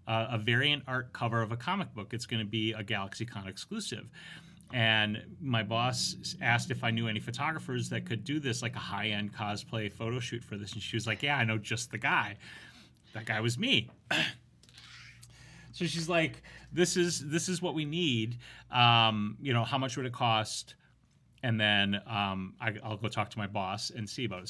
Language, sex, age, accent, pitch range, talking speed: English, male, 30-49, American, 110-130 Hz, 200 wpm